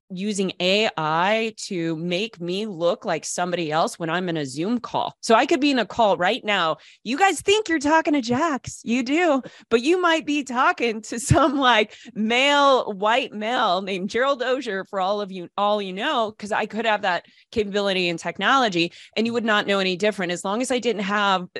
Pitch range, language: 175-225 Hz, English